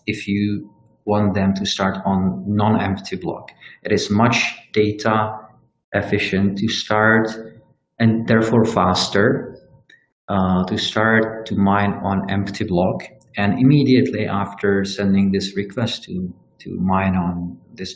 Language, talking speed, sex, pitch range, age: English, 125 wpm, male, 95-110 Hz, 40-59